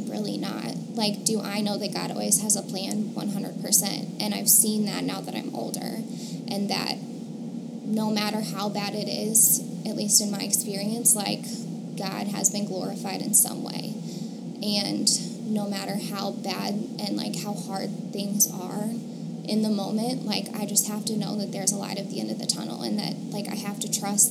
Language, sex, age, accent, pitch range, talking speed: English, female, 10-29, American, 205-225 Hz, 195 wpm